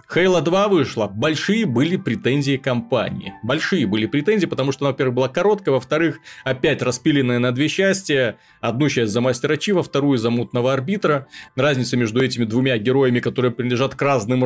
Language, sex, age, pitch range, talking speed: Russian, male, 30-49, 120-155 Hz, 165 wpm